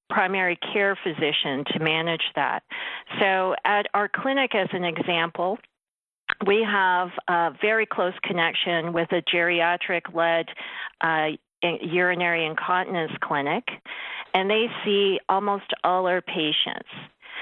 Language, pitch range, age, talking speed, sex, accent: English, 180-220 Hz, 40-59, 115 wpm, female, American